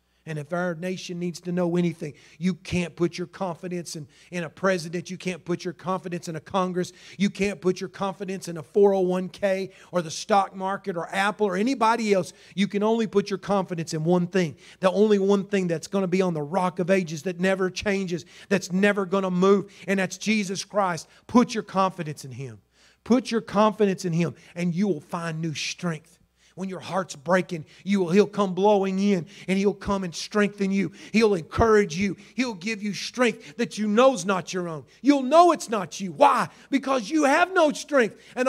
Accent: American